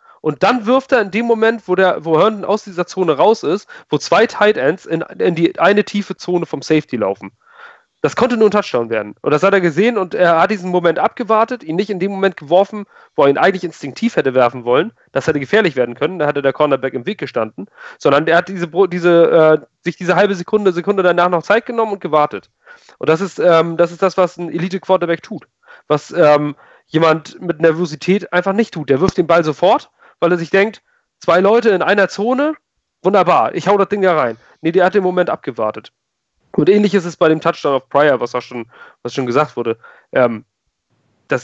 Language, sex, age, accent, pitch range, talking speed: German, male, 30-49, German, 140-190 Hz, 220 wpm